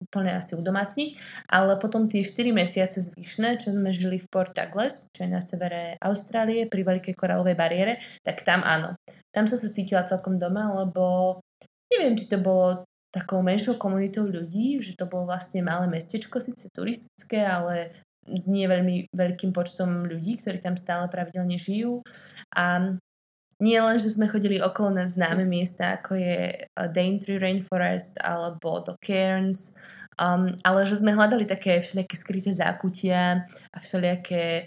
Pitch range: 180-200 Hz